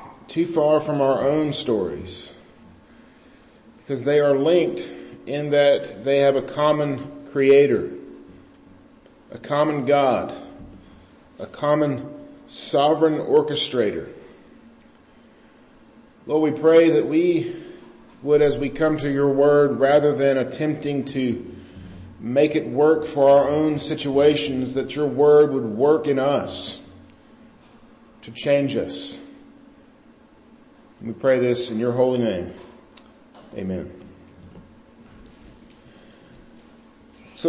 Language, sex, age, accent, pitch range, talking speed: English, male, 40-59, American, 130-160 Hz, 105 wpm